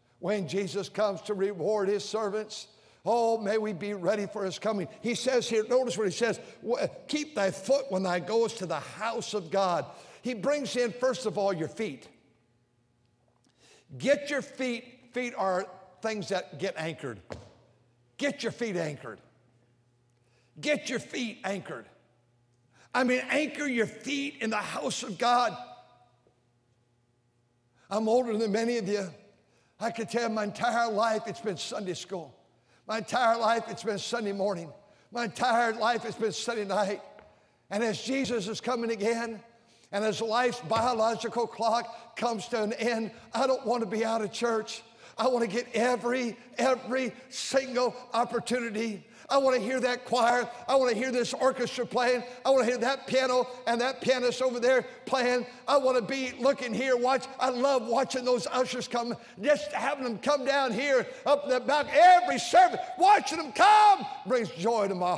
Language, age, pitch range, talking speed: English, 60-79, 200-250 Hz, 170 wpm